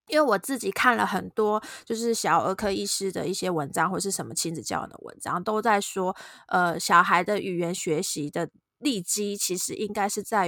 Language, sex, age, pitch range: Chinese, female, 20-39, 175-230 Hz